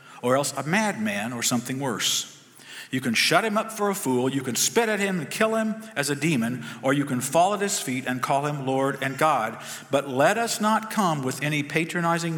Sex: male